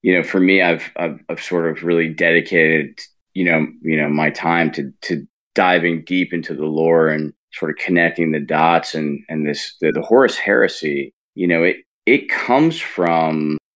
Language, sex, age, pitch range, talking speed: English, male, 20-39, 75-85 Hz, 190 wpm